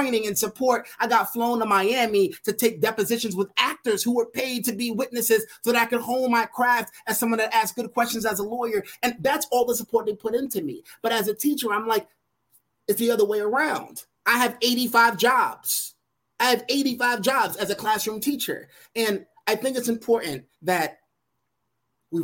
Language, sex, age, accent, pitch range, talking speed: English, male, 30-49, American, 160-235 Hz, 200 wpm